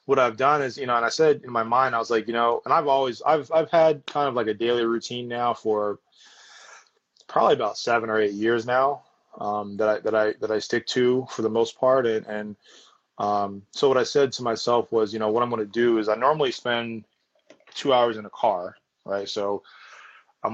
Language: English